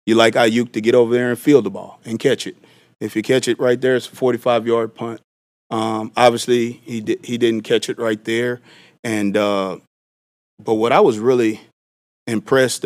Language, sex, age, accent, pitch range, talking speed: English, male, 30-49, American, 105-120 Hz, 195 wpm